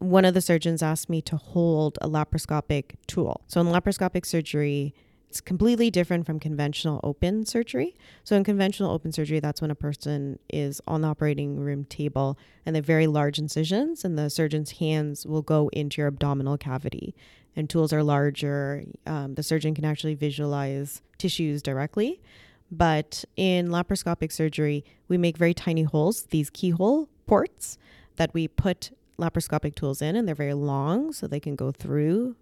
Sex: female